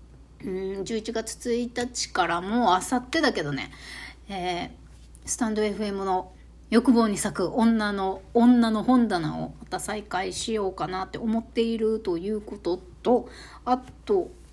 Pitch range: 185-275 Hz